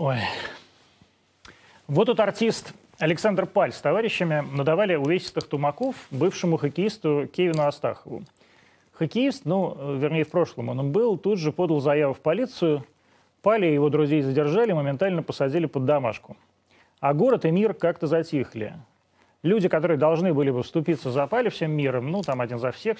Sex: male